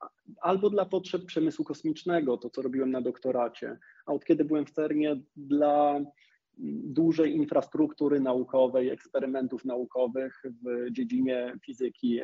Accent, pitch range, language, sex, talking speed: native, 130-170 Hz, Polish, male, 125 wpm